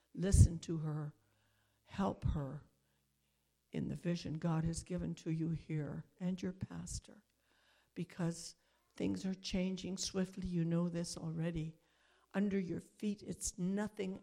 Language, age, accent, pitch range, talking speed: English, 60-79, American, 155-185 Hz, 130 wpm